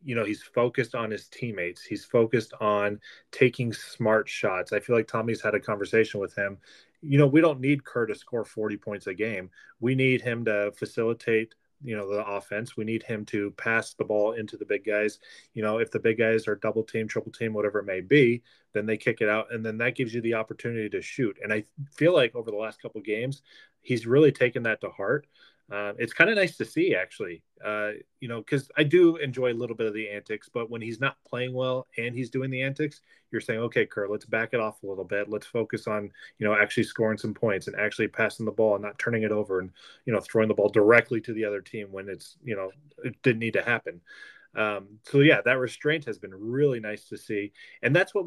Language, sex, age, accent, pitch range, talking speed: English, male, 30-49, American, 105-130 Hz, 240 wpm